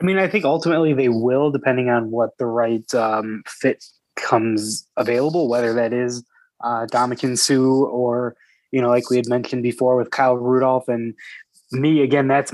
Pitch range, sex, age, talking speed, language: 120-140 Hz, male, 20-39, 170 wpm, English